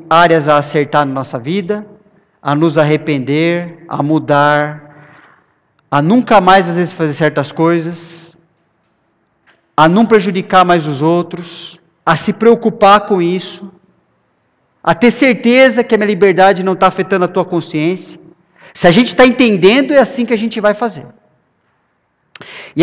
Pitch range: 170-230 Hz